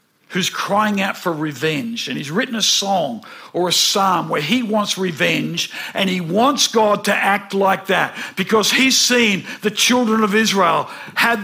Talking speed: 175 wpm